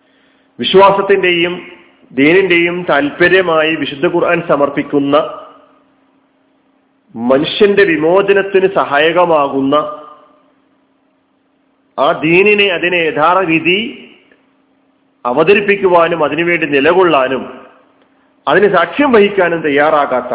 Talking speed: 60 wpm